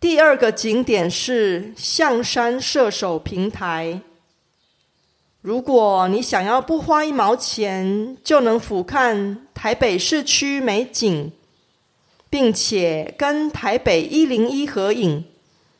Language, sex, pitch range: Korean, female, 195-275 Hz